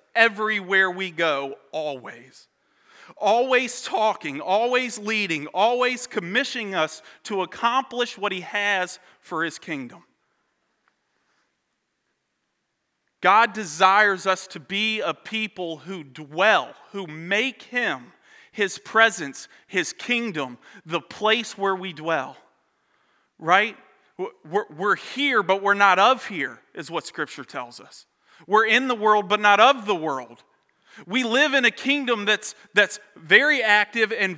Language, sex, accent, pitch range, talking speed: English, male, American, 195-245 Hz, 125 wpm